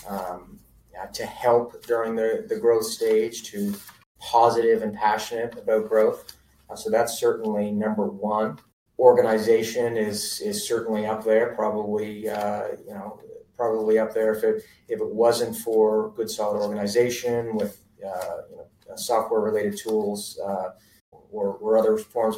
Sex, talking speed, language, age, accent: male, 145 wpm, English, 30-49, American